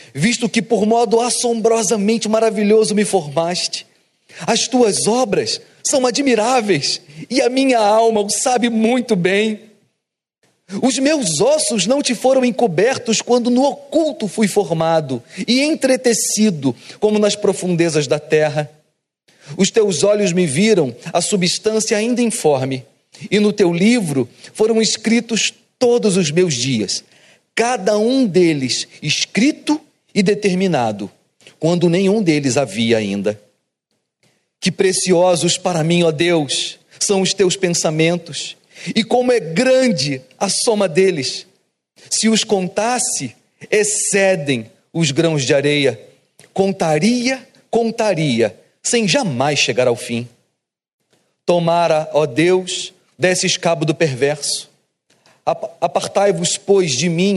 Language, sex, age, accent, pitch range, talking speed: Portuguese, male, 40-59, Brazilian, 165-225 Hz, 120 wpm